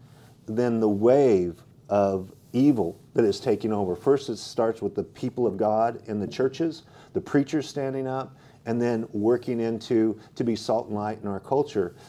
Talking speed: 180 wpm